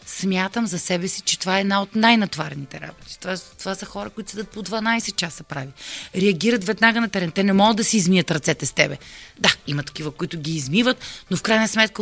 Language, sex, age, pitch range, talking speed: Bulgarian, female, 30-49, 170-220 Hz, 220 wpm